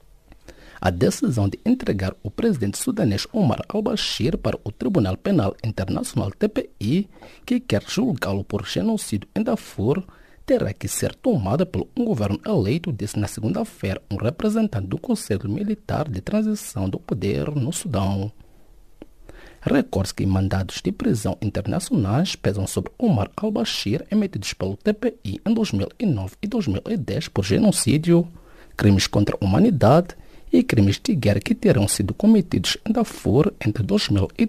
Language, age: English, 50-69